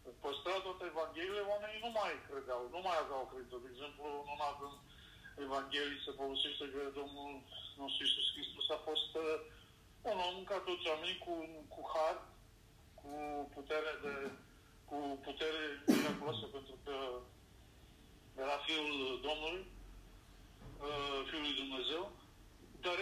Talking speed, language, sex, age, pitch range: 120 wpm, Romanian, male, 40-59, 140-185 Hz